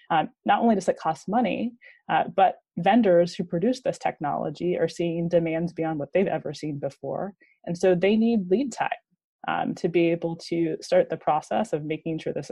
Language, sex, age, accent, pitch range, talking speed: English, female, 20-39, American, 155-185 Hz, 190 wpm